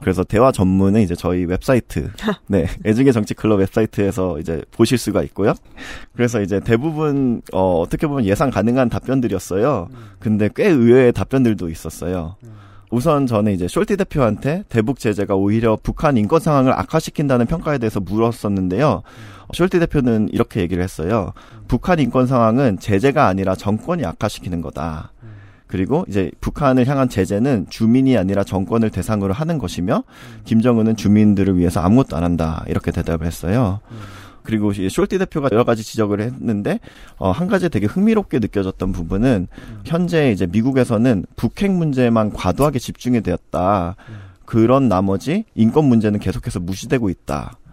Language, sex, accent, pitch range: Korean, male, native, 95-130 Hz